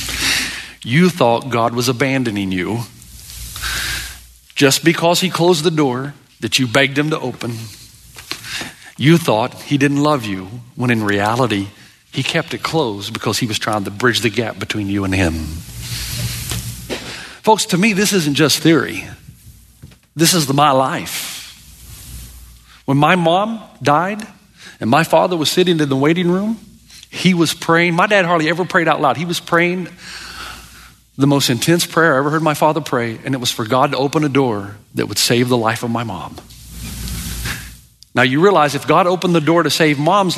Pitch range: 115-165 Hz